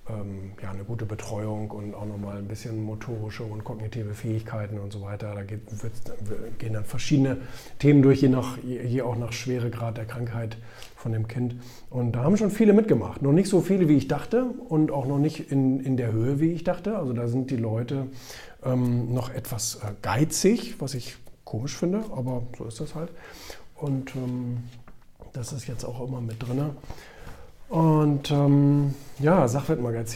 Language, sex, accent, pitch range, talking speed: German, male, German, 110-140 Hz, 185 wpm